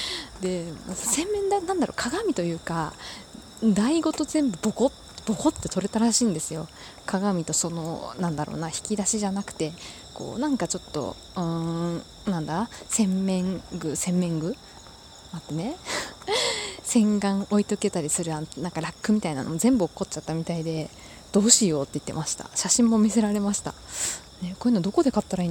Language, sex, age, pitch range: Japanese, female, 20-39, 170-240 Hz